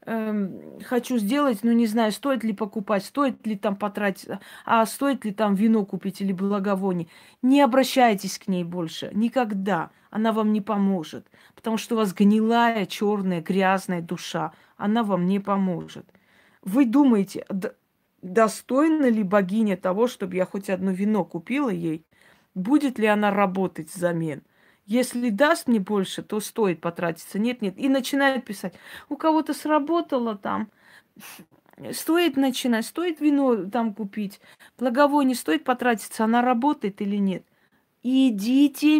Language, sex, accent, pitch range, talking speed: Russian, female, native, 195-255 Hz, 140 wpm